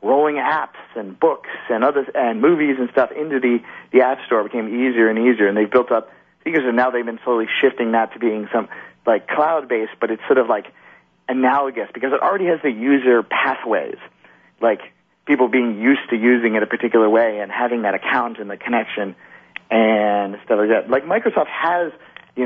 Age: 40-59